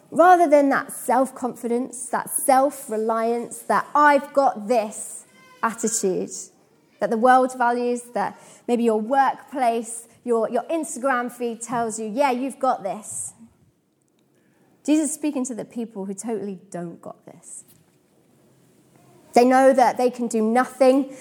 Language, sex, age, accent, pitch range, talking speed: English, female, 20-39, British, 215-275 Hz, 135 wpm